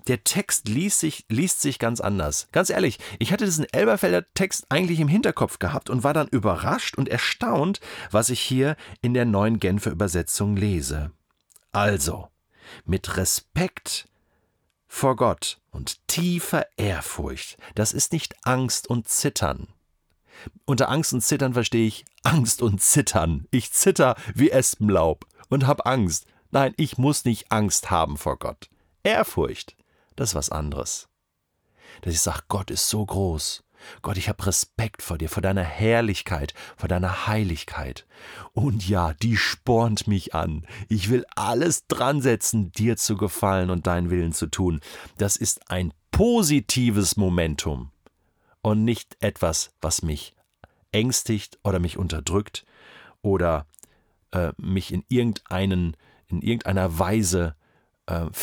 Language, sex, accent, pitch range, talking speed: German, male, German, 90-125 Hz, 140 wpm